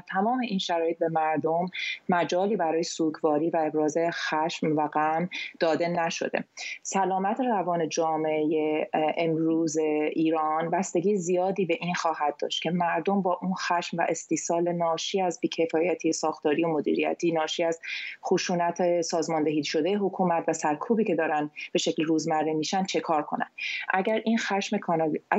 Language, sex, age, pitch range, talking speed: Persian, female, 30-49, 160-190 Hz, 140 wpm